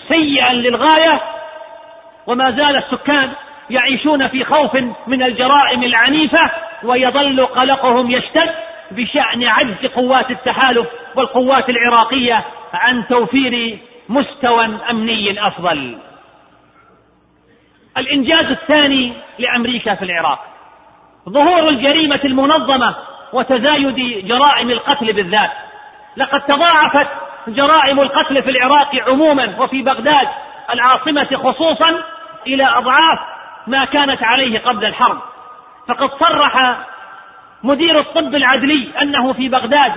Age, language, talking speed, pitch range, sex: 40-59, Arabic, 95 wpm, 245-295 Hz, male